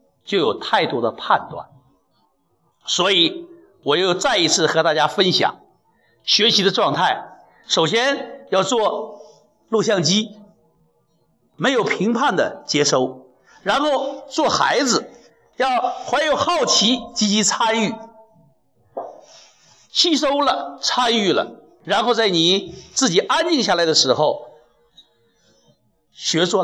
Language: Chinese